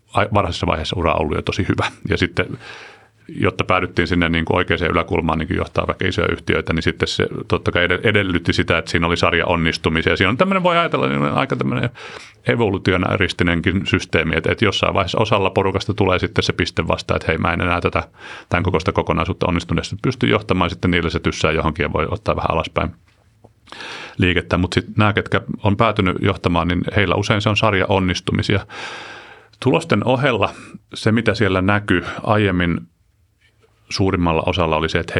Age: 30-49